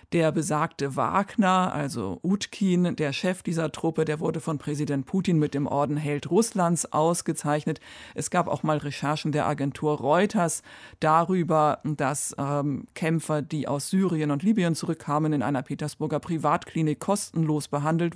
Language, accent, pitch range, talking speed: German, German, 150-185 Hz, 145 wpm